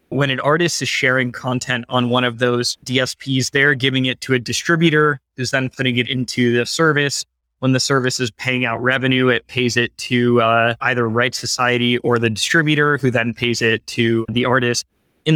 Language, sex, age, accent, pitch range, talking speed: English, male, 20-39, American, 120-135 Hz, 195 wpm